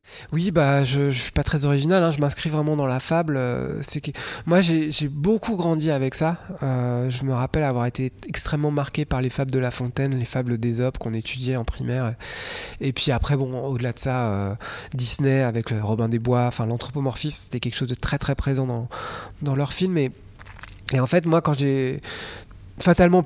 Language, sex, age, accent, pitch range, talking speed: French, male, 20-39, French, 125-155 Hz, 210 wpm